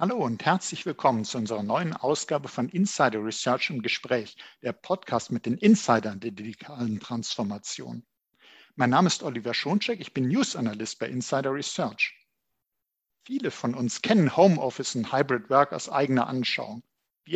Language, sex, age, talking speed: German, male, 50-69, 155 wpm